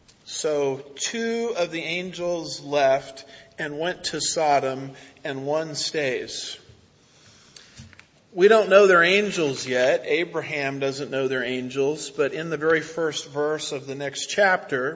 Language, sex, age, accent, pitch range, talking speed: English, male, 40-59, American, 135-165 Hz, 135 wpm